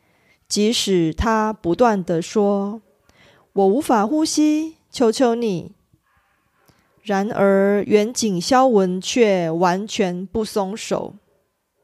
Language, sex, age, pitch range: Korean, female, 30-49, 185-235 Hz